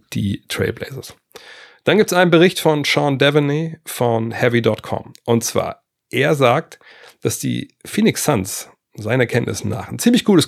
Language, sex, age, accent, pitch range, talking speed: German, male, 40-59, German, 100-125 Hz, 150 wpm